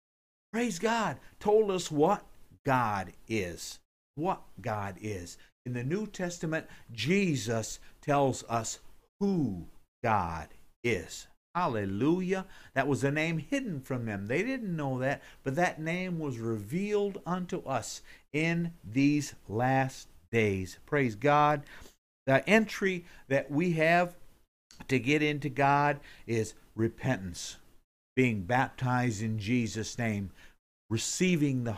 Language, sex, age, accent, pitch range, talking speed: English, male, 50-69, American, 110-175 Hz, 120 wpm